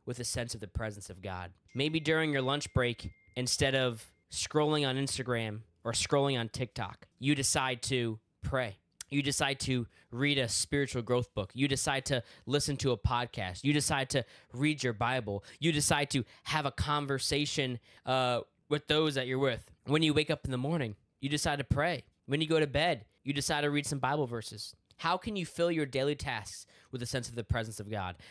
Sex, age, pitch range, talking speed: male, 10-29, 115-150 Hz, 205 wpm